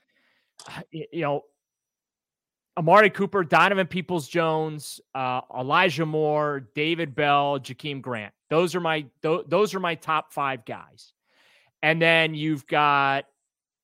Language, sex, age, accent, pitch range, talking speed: English, male, 30-49, American, 135-160 Hz, 115 wpm